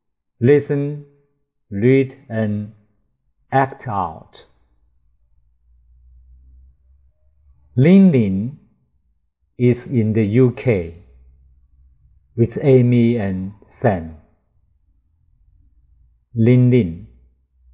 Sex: male